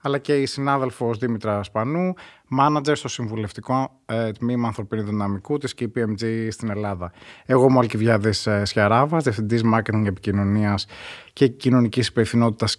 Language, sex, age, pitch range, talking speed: Greek, male, 20-39, 110-140 Hz, 125 wpm